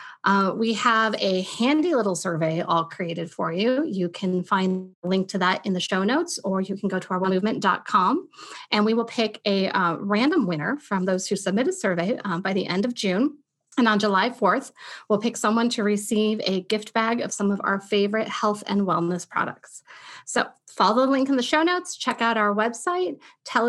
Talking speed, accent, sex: 210 wpm, American, female